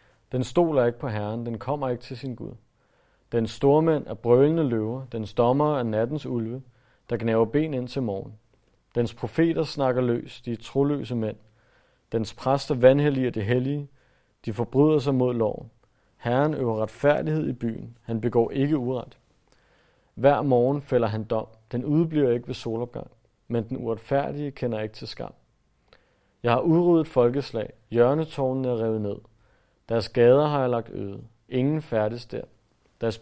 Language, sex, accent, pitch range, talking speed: Danish, male, native, 115-135 Hz, 165 wpm